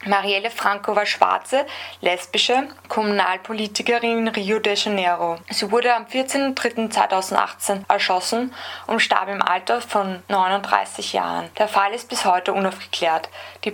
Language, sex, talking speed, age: German, female, 125 wpm, 20-39